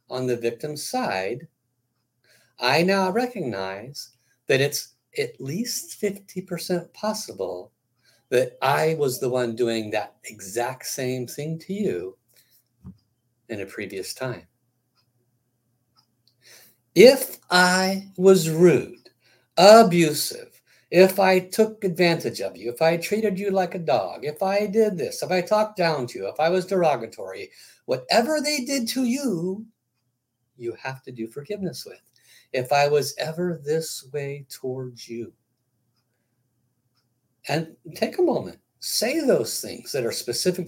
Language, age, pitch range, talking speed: English, 60-79, 120-185 Hz, 135 wpm